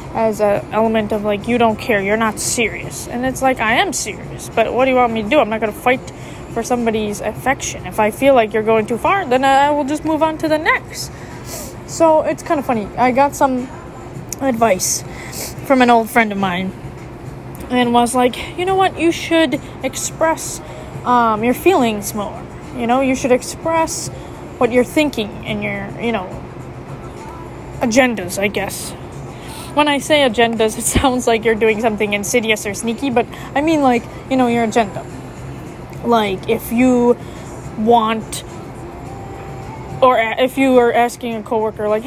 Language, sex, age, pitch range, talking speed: English, female, 10-29, 225-275 Hz, 180 wpm